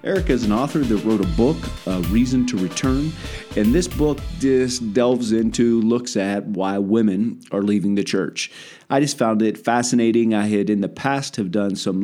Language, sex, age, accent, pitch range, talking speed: English, male, 40-59, American, 100-120 Hz, 195 wpm